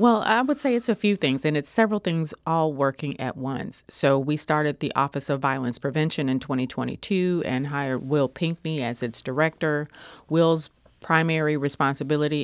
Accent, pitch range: American, 140-165 Hz